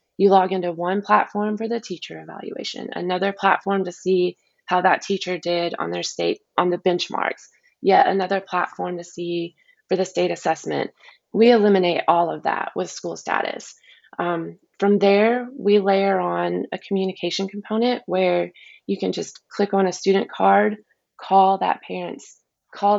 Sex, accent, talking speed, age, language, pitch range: female, American, 160 wpm, 20-39, English, 180-205 Hz